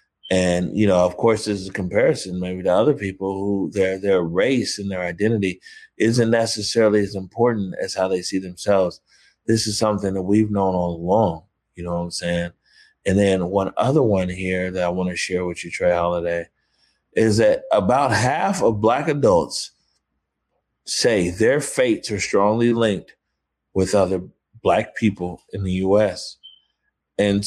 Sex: male